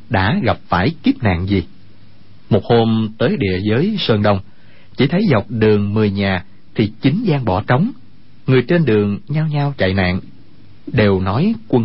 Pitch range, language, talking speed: 100-125 Hz, Vietnamese, 170 wpm